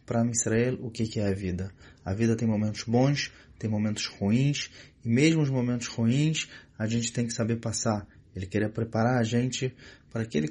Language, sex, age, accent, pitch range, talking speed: English, male, 20-39, Brazilian, 105-125 Hz, 190 wpm